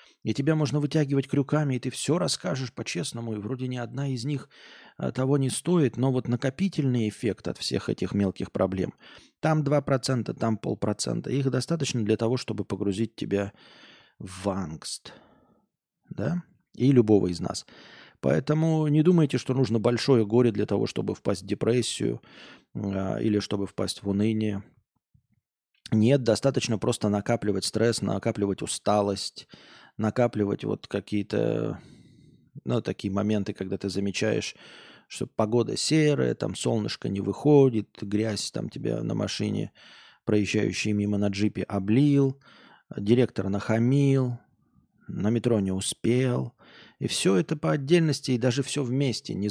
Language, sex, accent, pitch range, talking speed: Russian, male, native, 105-135 Hz, 135 wpm